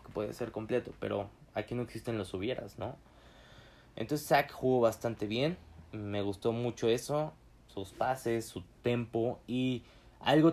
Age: 20-39